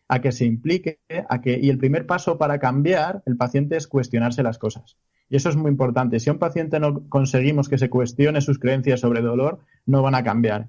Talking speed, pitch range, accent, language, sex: 225 wpm, 125-150 Hz, Spanish, Spanish, male